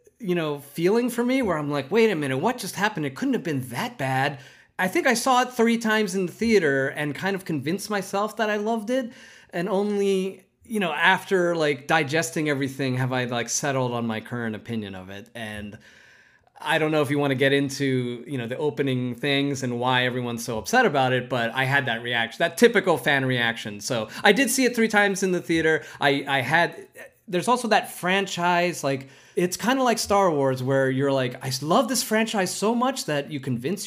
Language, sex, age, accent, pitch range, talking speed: English, male, 30-49, American, 135-215 Hz, 220 wpm